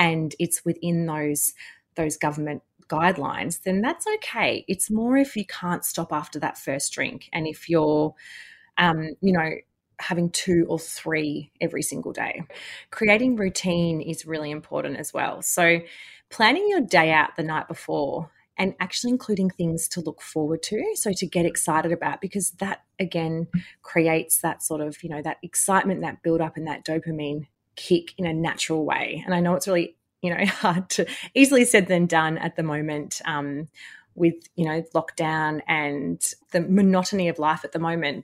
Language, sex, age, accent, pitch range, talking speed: English, female, 30-49, Australian, 155-185 Hz, 175 wpm